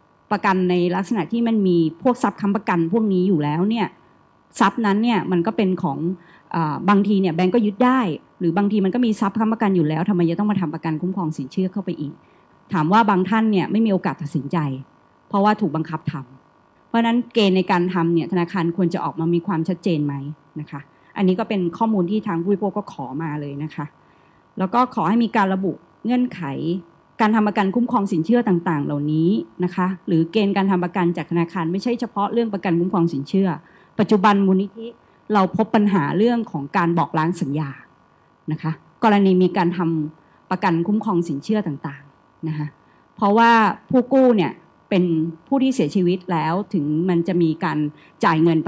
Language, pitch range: Thai, 165-210 Hz